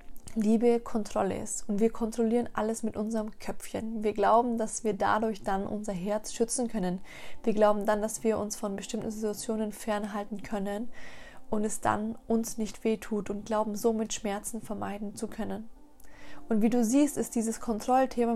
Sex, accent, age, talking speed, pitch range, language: female, German, 20-39, 165 wpm, 210-235 Hz, German